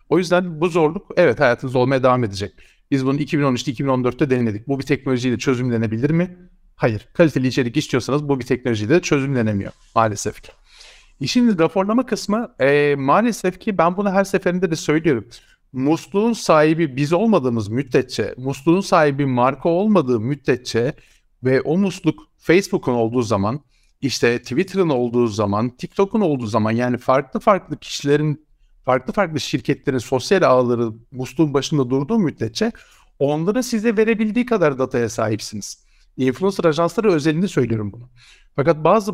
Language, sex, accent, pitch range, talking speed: Turkish, male, native, 130-180 Hz, 140 wpm